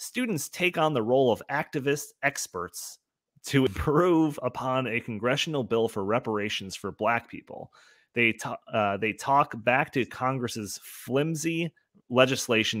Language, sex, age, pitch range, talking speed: English, male, 30-49, 110-140 Hz, 125 wpm